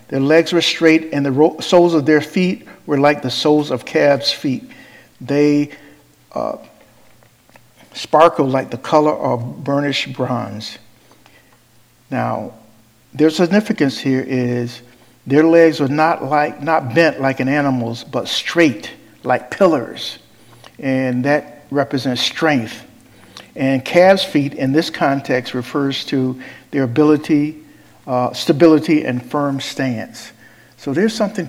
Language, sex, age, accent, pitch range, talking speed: English, male, 50-69, American, 120-145 Hz, 130 wpm